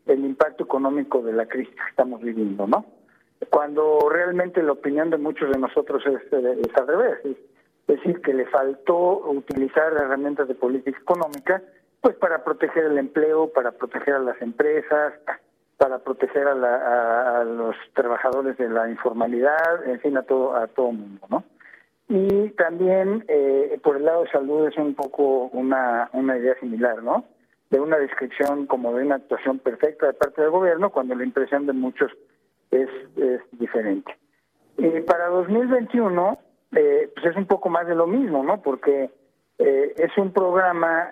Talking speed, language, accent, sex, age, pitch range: 170 wpm, Spanish, Mexican, male, 50-69, 130-175 Hz